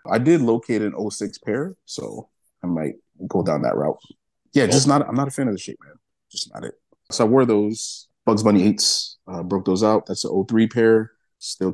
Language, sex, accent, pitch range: English, male, American, 100-120 Hz